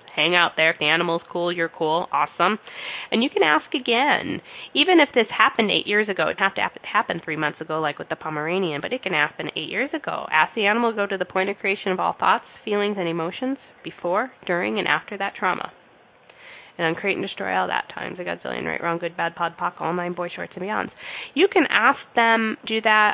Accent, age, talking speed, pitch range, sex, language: American, 20-39, 235 wpm, 155-205 Hz, female, English